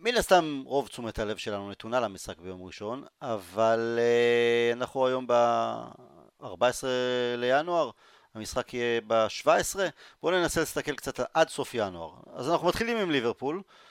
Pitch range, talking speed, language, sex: 120-180 Hz, 135 wpm, Hebrew, male